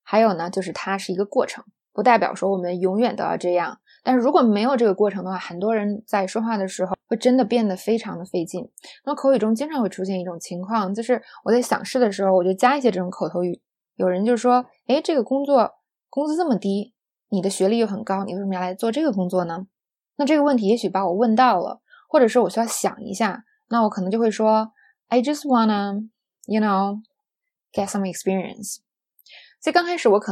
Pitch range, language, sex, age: 185-240 Hz, Chinese, female, 20-39